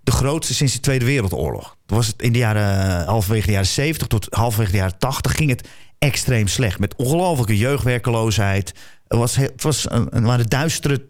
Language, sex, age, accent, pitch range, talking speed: Dutch, male, 40-59, Dutch, 110-145 Hz, 190 wpm